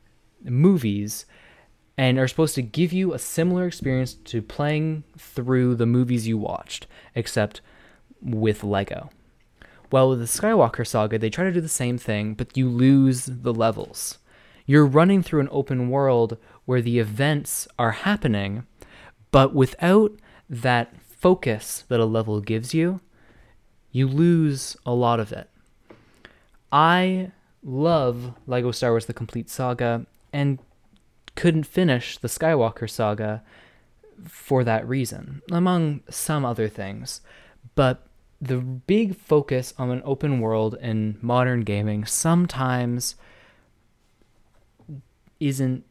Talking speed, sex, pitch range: 125 wpm, male, 115-155 Hz